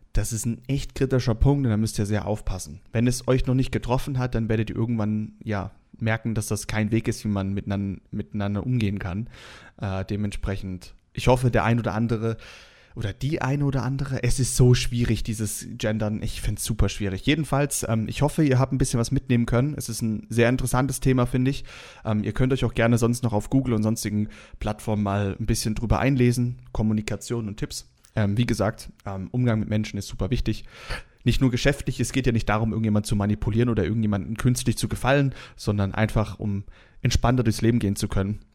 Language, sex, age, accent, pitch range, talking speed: German, male, 30-49, German, 105-125 Hz, 205 wpm